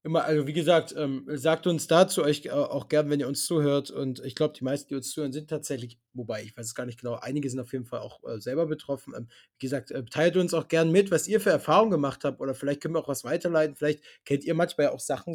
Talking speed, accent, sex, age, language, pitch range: 280 wpm, German, male, 20-39, German, 140-170 Hz